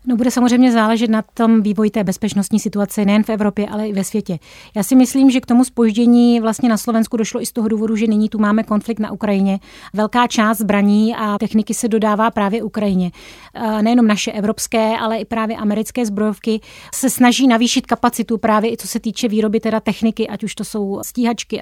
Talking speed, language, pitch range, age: 205 wpm, Czech, 205-230 Hz, 30-49